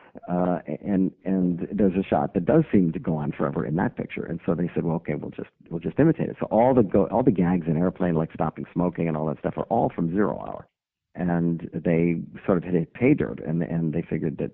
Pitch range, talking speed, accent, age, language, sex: 80-95 Hz, 250 wpm, American, 50-69, English, male